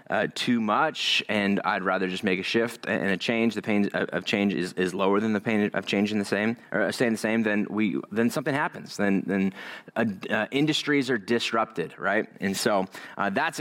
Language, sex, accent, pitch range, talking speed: English, male, American, 100-130 Hz, 215 wpm